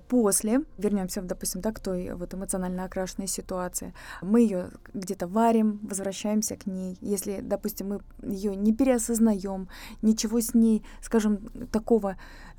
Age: 20-39